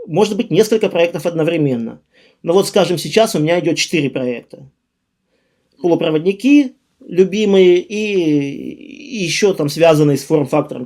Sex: male